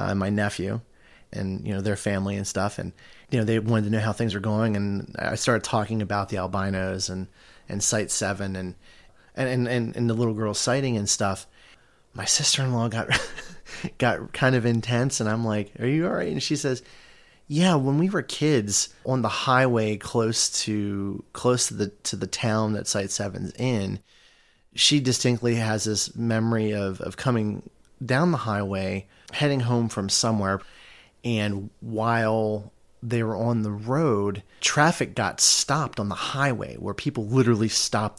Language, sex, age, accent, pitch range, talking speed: English, male, 30-49, American, 100-120 Hz, 175 wpm